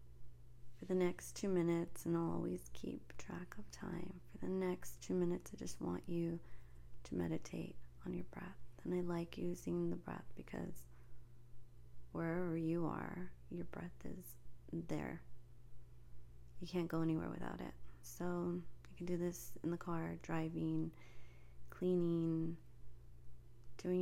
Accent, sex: American, female